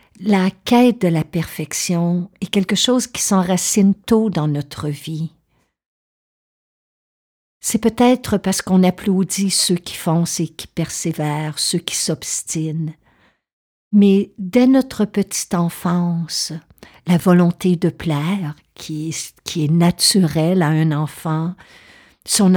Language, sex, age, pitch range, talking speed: French, female, 60-79, 160-200 Hz, 120 wpm